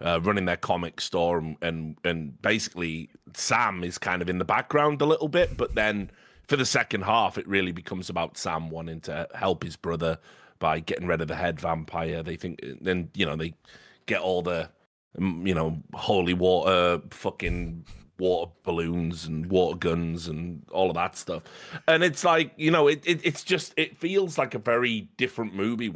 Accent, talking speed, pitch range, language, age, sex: British, 190 wpm, 90-140 Hz, English, 30-49, male